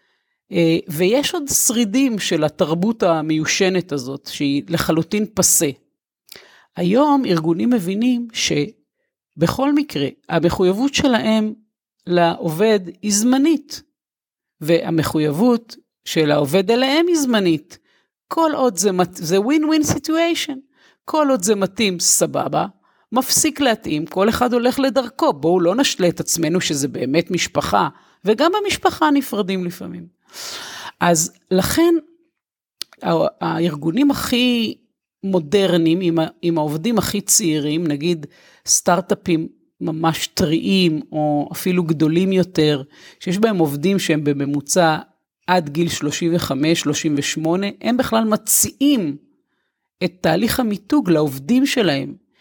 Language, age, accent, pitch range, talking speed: Hebrew, 50-69, native, 165-245 Hz, 100 wpm